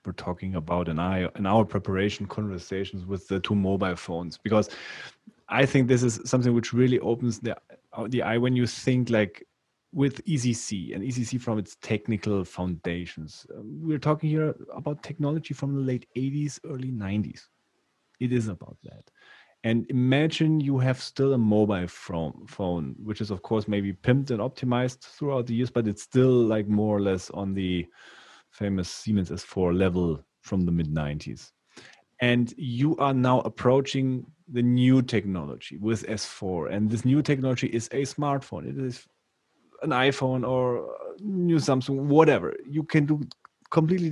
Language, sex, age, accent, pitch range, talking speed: English, male, 30-49, German, 100-140 Hz, 160 wpm